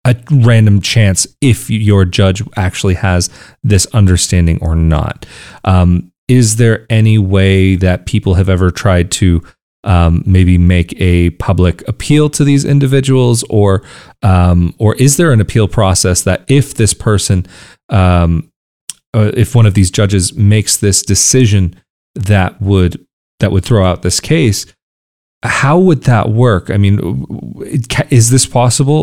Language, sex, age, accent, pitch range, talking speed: English, male, 30-49, American, 95-125 Hz, 145 wpm